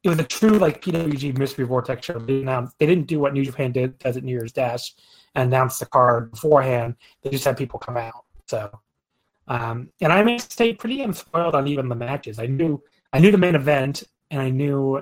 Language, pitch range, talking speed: English, 125-155 Hz, 220 wpm